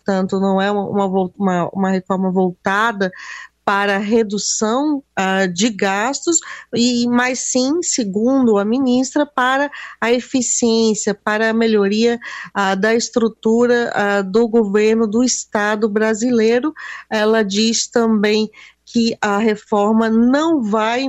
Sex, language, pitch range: female, Portuguese, 195-245 Hz